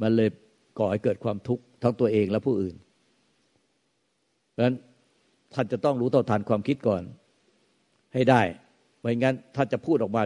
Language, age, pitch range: Thai, 60-79, 115-150 Hz